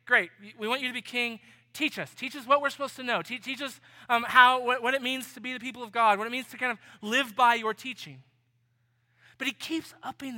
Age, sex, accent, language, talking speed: 20-39, male, American, English, 260 wpm